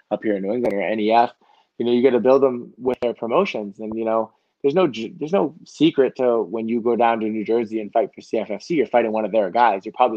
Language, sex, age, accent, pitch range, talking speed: English, male, 20-39, American, 110-125 Hz, 265 wpm